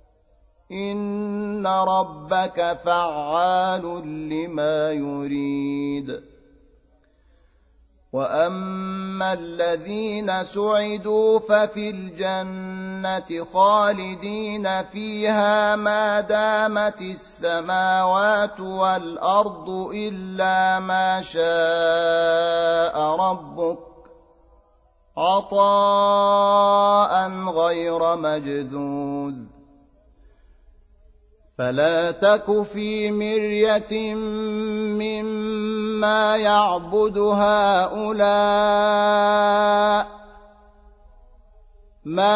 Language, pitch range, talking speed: Arabic, 165-210 Hz, 45 wpm